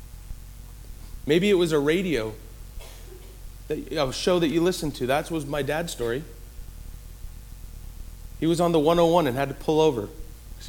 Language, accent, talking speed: English, American, 150 wpm